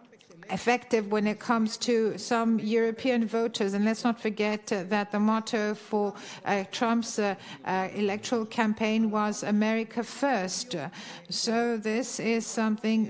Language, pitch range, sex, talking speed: Greek, 205-225 Hz, female, 135 wpm